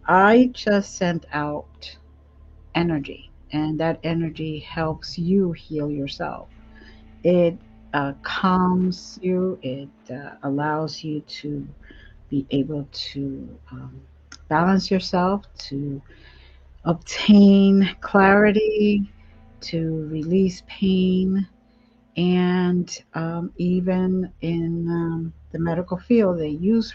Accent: American